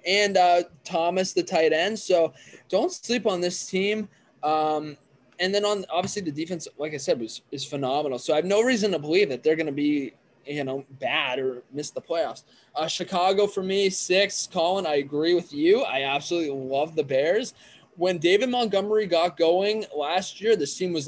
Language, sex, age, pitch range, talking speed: English, male, 20-39, 135-180 Hz, 195 wpm